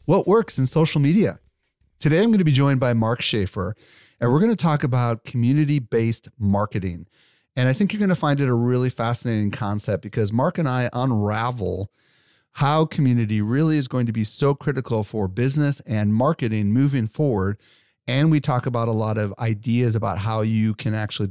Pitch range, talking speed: 105-135 Hz, 190 wpm